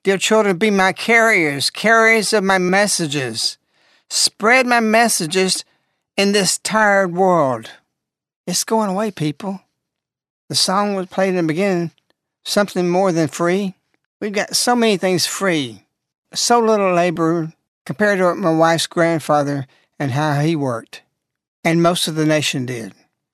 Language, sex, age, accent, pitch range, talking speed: English, male, 60-79, American, 170-220 Hz, 145 wpm